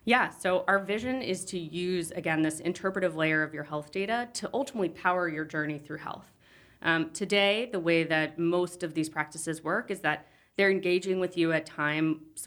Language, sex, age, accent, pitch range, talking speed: English, female, 20-39, American, 160-190 Hz, 190 wpm